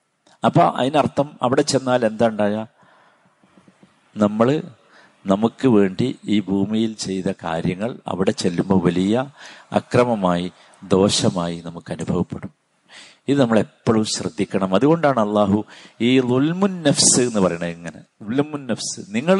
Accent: native